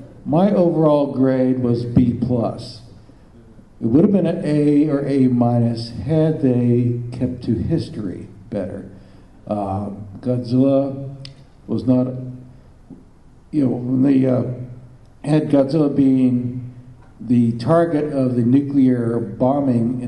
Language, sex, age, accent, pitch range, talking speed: English, male, 60-79, American, 115-130 Hz, 120 wpm